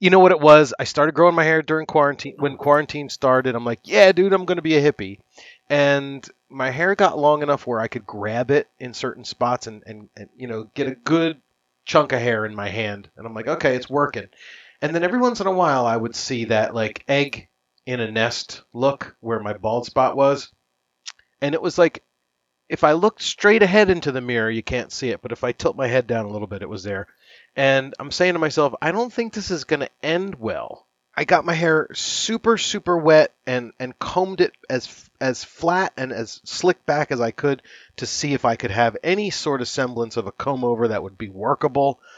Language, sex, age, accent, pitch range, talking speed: English, male, 30-49, American, 115-155 Hz, 230 wpm